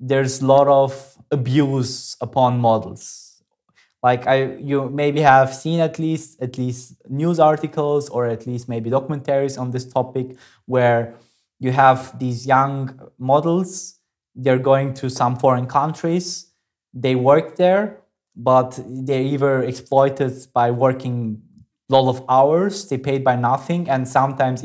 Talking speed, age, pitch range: 140 wpm, 20-39, 125-150 Hz